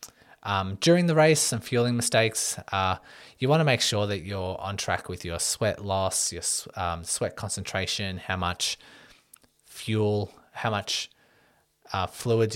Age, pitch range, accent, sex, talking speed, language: 20-39, 90-105 Hz, Australian, male, 155 wpm, English